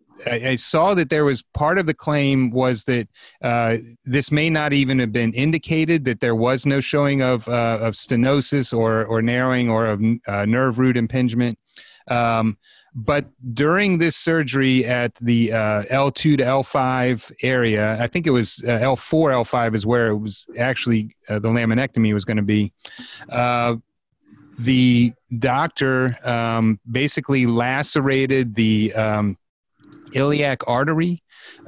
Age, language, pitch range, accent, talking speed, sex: 30-49, English, 115-135 Hz, American, 145 wpm, male